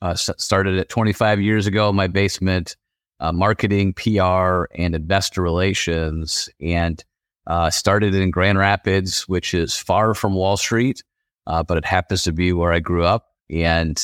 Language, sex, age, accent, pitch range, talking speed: English, male, 30-49, American, 85-100 Hz, 165 wpm